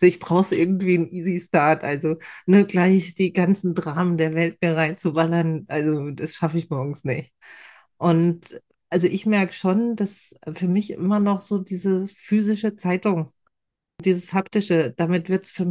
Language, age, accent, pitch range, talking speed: German, 40-59, German, 170-190 Hz, 155 wpm